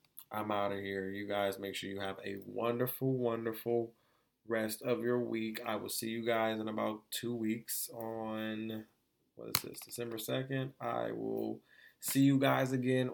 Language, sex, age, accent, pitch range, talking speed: English, male, 20-39, American, 100-120 Hz, 175 wpm